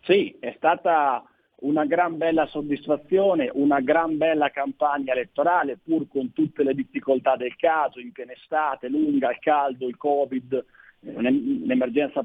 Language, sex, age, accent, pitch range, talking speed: Italian, male, 40-59, native, 135-160 Hz, 135 wpm